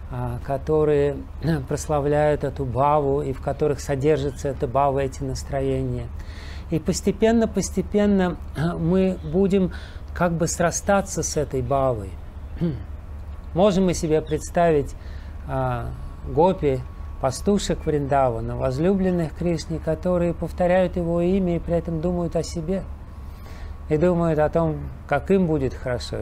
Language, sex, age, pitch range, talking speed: Russian, male, 40-59, 120-170 Hz, 115 wpm